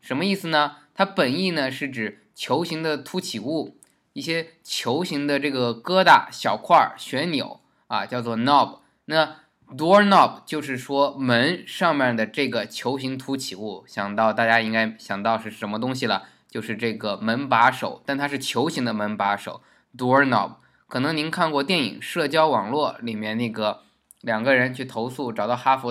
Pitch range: 110-145 Hz